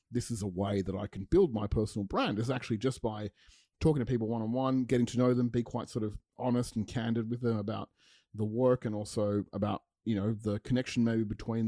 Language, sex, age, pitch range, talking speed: English, male, 30-49, 100-120 Hz, 225 wpm